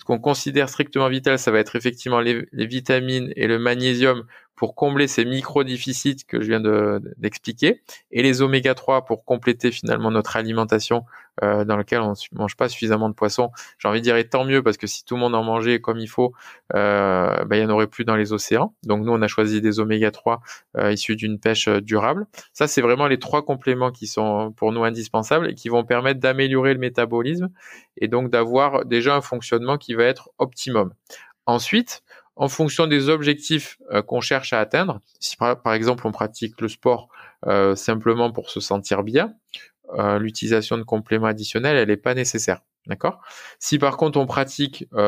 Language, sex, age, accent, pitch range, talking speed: French, male, 20-39, French, 110-130 Hz, 195 wpm